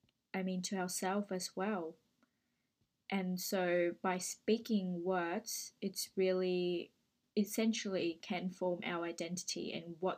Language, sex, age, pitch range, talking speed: English, female, 20-39, 180-210 Hz, 120 wpm